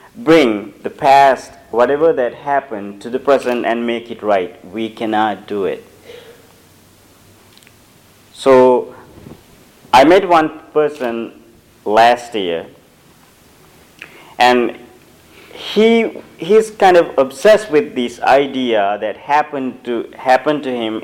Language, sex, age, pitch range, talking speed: English, male, 50-69, 120-160 Hz, 110 wpm